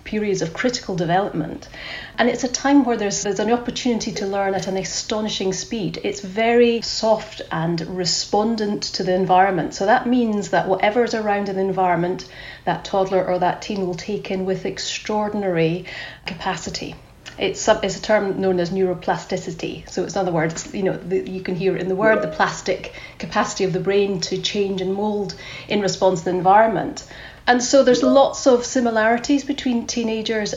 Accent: British